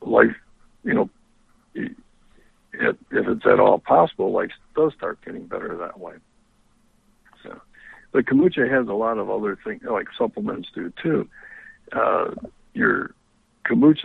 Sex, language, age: male, English, 60-79